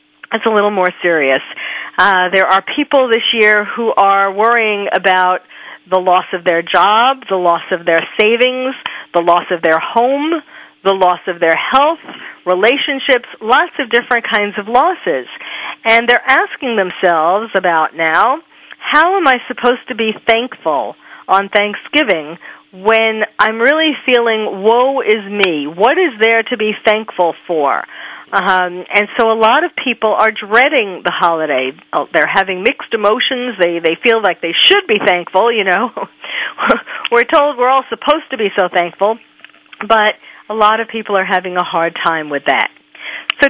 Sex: female